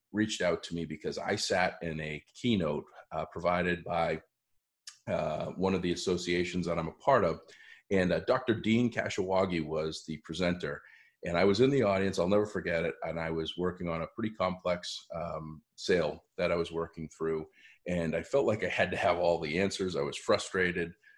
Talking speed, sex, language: 200 wpm, male, English